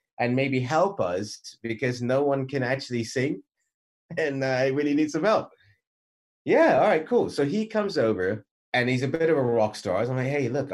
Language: English